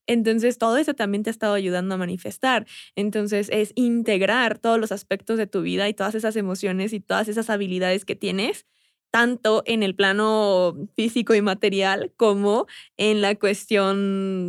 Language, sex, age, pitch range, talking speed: Spanish, female, 20-39, 190-215 Hz, 165 wpm